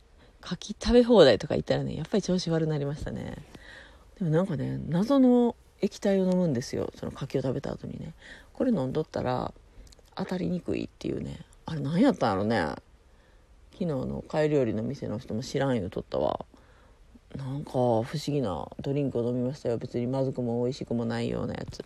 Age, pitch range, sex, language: 40-59, 110-160 Hz, female, Japanese